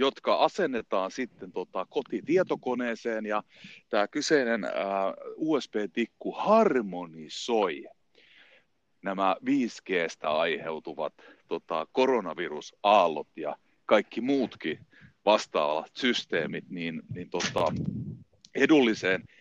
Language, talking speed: Finnish, 75 wpm